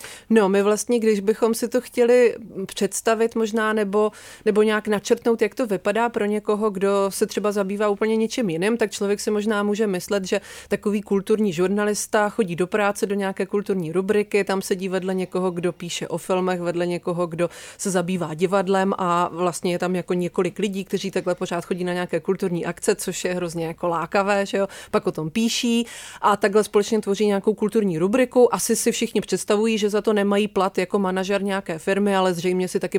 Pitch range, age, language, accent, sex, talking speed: 185-220 Hz, 30-49, Czech, native, female, 195 wpm